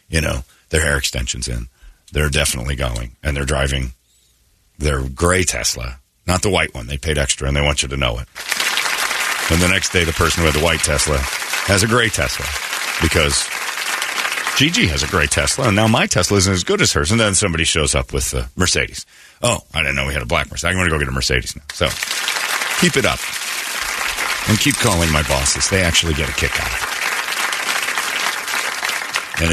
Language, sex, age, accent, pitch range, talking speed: English, male, 40-59, American, 70-90 Hz, 205 wpm